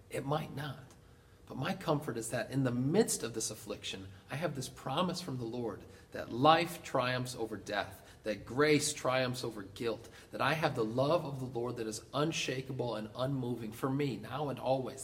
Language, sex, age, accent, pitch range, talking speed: English, male, 40-59, American, 110-145 Hz, 195 wpm